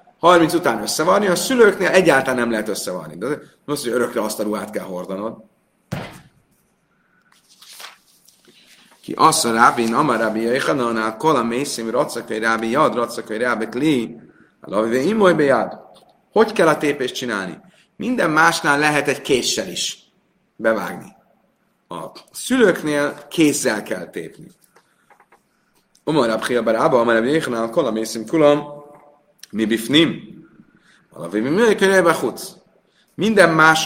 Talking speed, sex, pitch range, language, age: 120 wpm, male, 115-170 Hz, Hungarian, 30-49